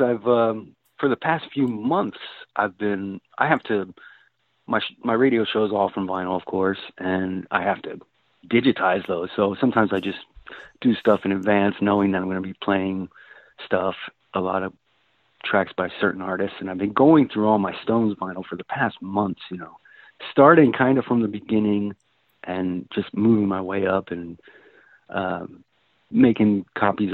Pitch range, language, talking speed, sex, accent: 95-115 Hz, English, 180 wpm, male, American